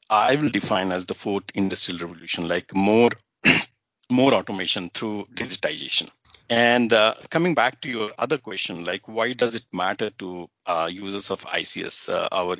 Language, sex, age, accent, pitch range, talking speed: English, male, 50-69, Indian, 95-130 Hz, 160 wpm